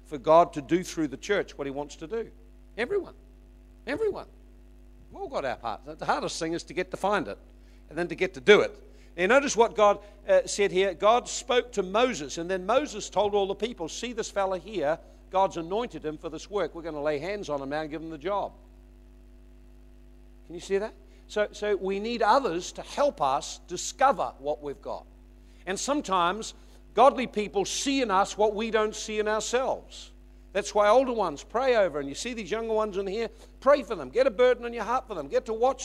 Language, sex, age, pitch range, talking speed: English, male, 50-69, 190-250 Hz, 225 wpm